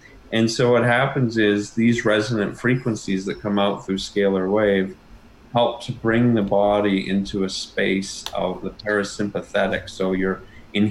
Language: English